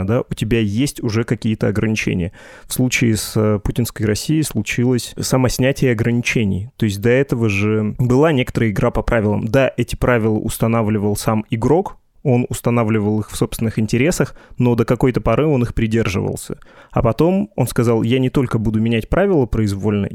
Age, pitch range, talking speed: 20-39, 110-130 Hz, 160 wpm